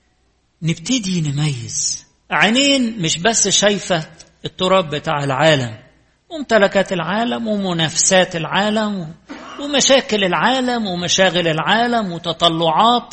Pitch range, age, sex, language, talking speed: 155-215 Hz, 50-69, male, English, 80 wpm